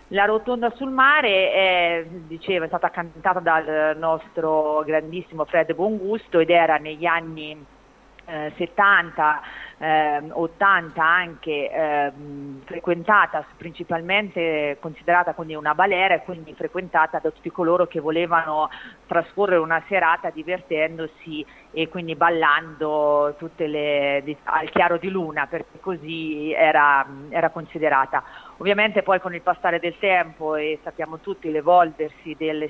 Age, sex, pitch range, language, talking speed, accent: 40-59, female, 155-180 Hz, Italian, 125 wpm, native